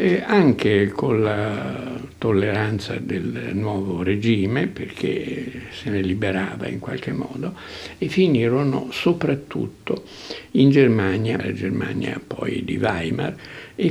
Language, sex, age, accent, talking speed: Italian, male, 60-79, native, 110 wpm